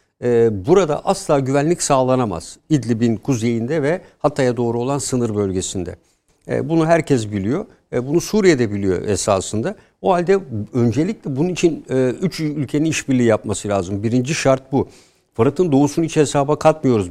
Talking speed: 130 wpm